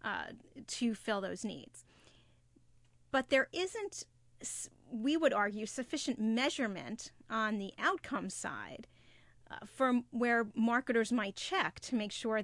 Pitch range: 205-260 Hz